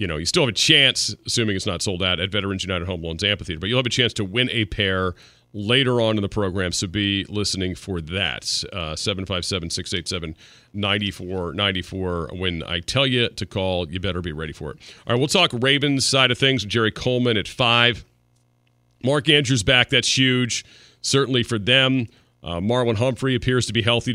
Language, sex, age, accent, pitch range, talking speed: English, male, 40-59, American, 95-120 Hz, 195 wpm